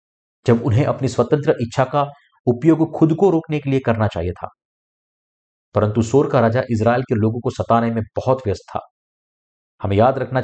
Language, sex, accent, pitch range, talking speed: Hindi, male, native, 110-140 Hz, 180 wpm